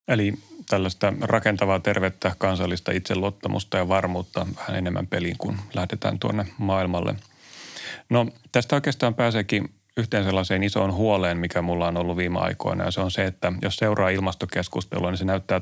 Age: 30-49